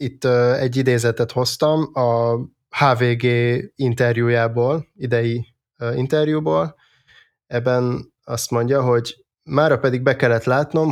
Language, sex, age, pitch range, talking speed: Hungarian, male, 20-39, 115-130 Hz, 100 wpm